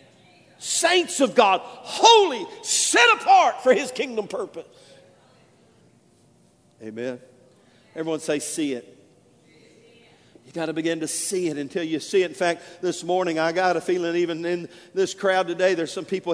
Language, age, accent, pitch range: English, 50-69, American, 165-205 Hz